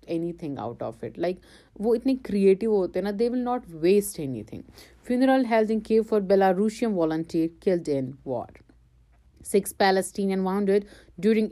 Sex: female